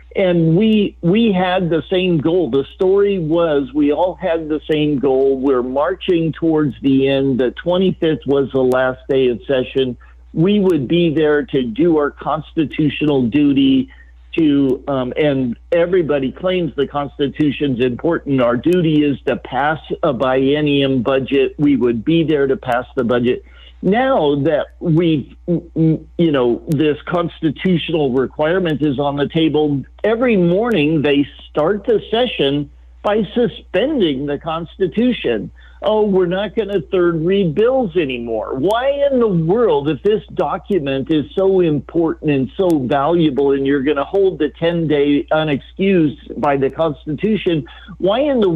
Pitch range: 140-180 Hz